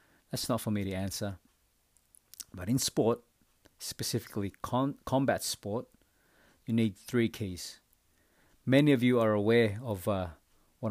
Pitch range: 95-120 Hz